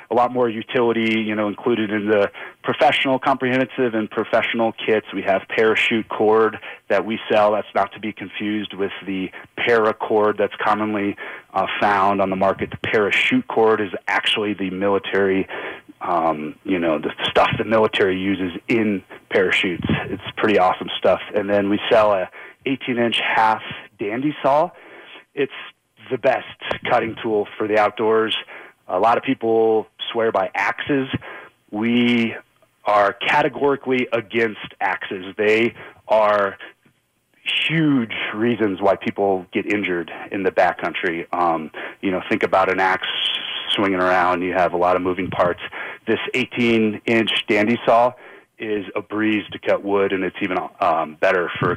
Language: English